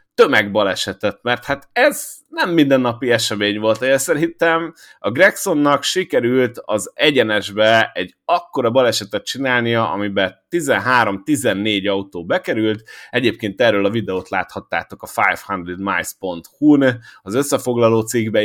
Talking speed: 110 wpm